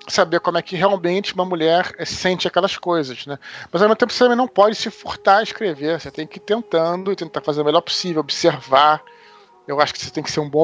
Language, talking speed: Portuguese, 250 wpm